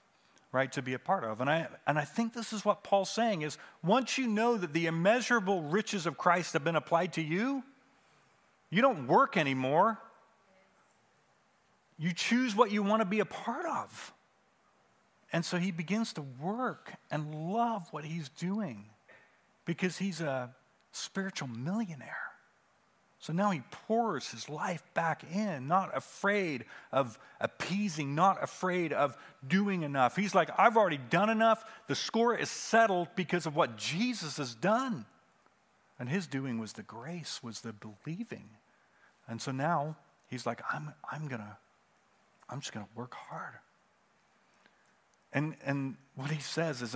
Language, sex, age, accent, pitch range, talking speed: English, male, 40-59, American, 135-205 Hz, 155 wpm